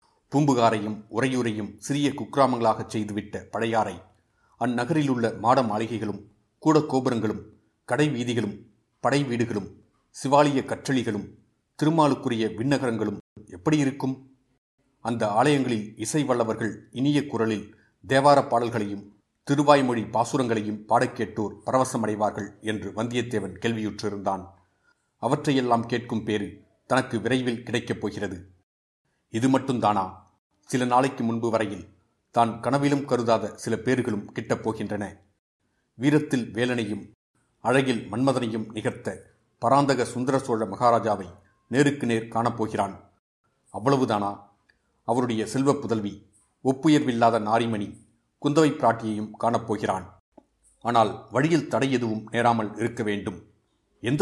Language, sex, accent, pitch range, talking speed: Tamil, male, native, 105-130 Hz, 90 wpm